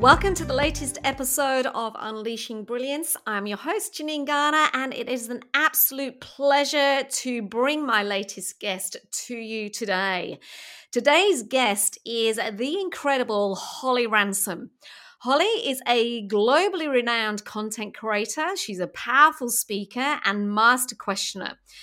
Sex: female